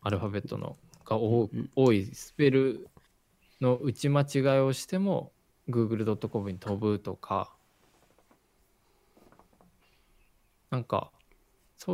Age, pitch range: 20-39, 100-135 Hz